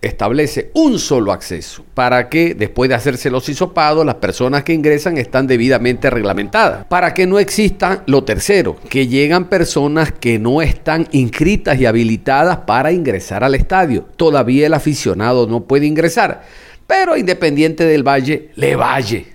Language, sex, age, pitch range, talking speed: Spanish, male, 50-69, 135-190 Hz, 150 wpm